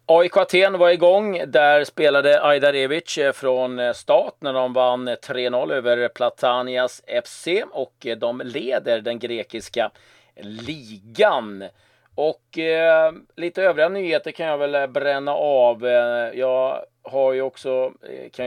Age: 30-49